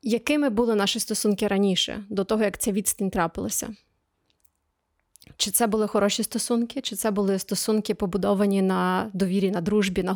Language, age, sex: Ukrainian, 20-39, female